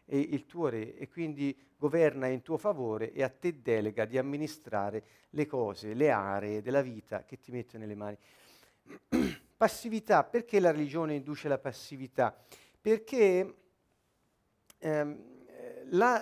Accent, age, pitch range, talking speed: native, 50-69, 130-180 Hz, 135 wpm